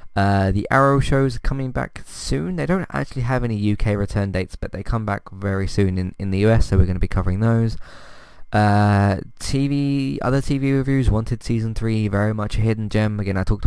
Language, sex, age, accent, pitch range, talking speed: English, male, 20-39, British, 95-115 Hz, 215 wpm